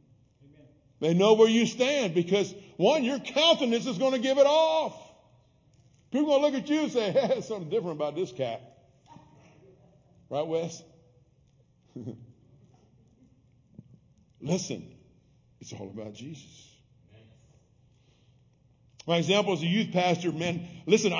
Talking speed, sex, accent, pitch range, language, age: 130 wpm, male, American, 155-245 Hz, English, 50-69